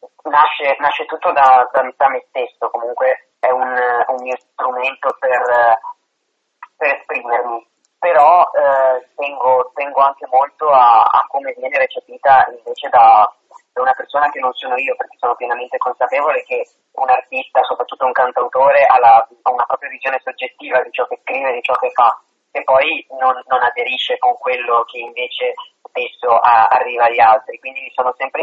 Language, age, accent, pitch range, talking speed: Italian, 30-49, native, 130-185 Hz, 160 wpm